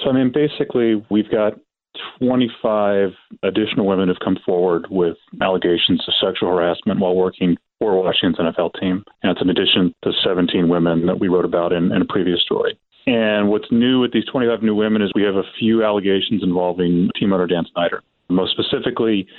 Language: English